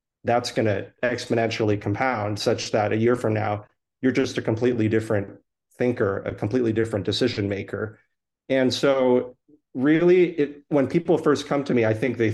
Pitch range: 105-130 Hz